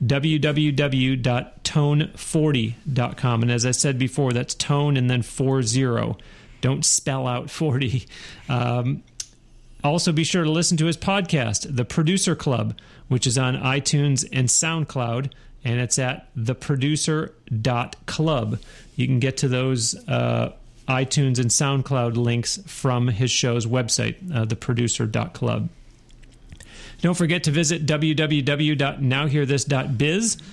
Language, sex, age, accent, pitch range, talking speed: English, male, 40-59, American, 125-150 Hz, 115 wpm